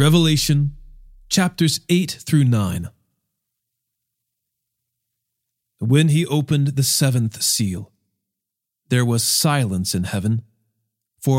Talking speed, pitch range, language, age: 90 wpm, 115-145 Hz, English, 40-59